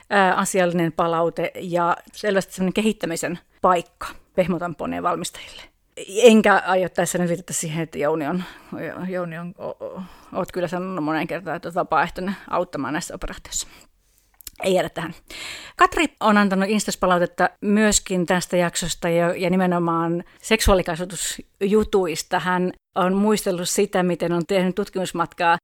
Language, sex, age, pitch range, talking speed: Finnish, female, 30-49, 175-210 Hz, 120 wpm